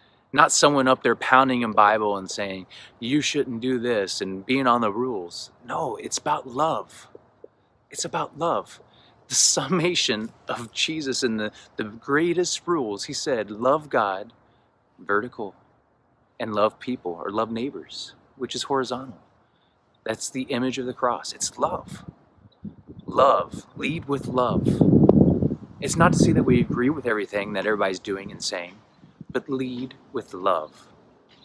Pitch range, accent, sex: 100-130 Hz, American, male